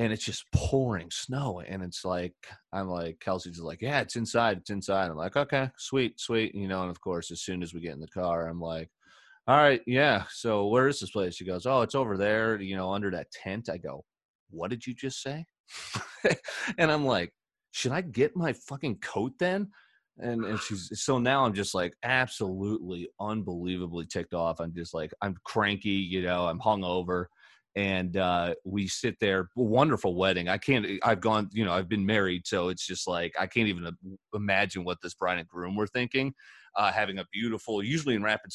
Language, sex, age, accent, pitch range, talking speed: English, male, 30-49, American, 90-115 Hz, 205 wpm